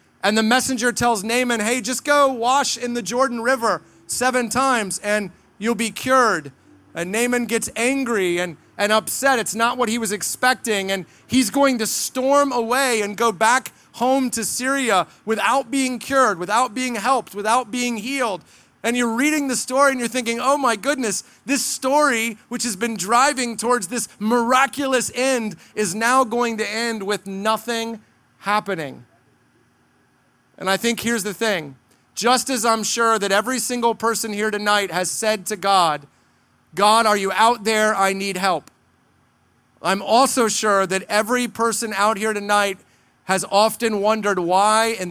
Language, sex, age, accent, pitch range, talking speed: English, male, 30-49, American, 205-250 Hz, 165 wpm